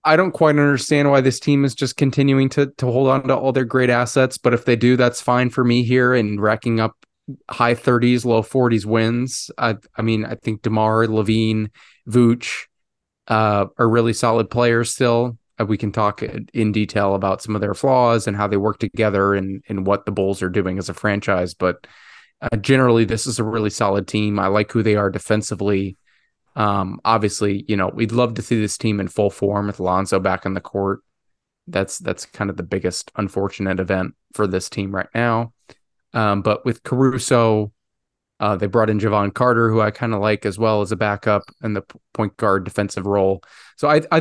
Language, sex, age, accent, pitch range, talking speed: English, male, 20-39, American, 100-120 Hz, 205 wpm